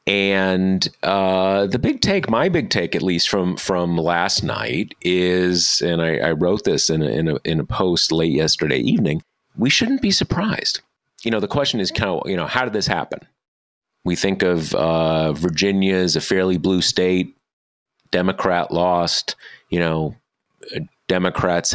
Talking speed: 170 wpm